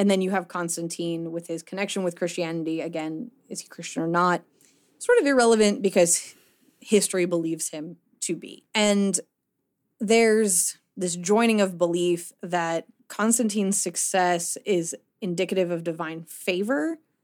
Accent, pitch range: American, 170-210 Hz